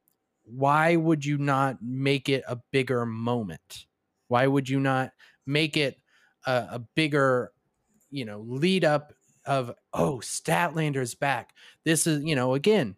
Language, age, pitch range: English, 20-39, 125-170 Hz